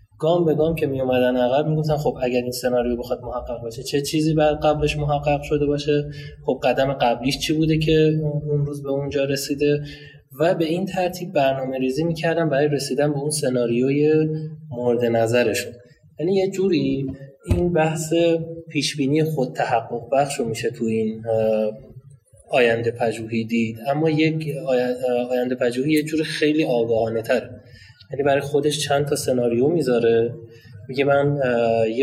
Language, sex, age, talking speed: Persian, male, 20-39, 150 wpm